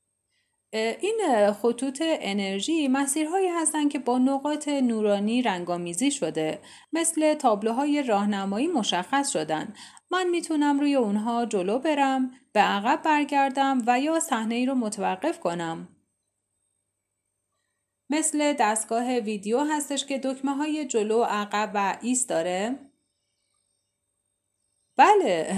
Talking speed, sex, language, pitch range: 105 wpm, female, Persian, 190-300 Hz